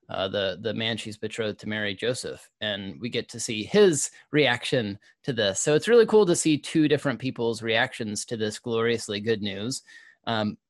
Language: English